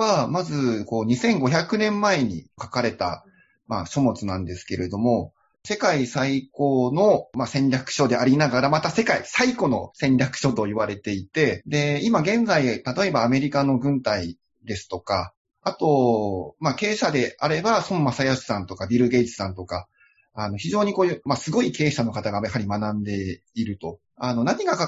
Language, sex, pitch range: Japanese, male, 120-200 Hz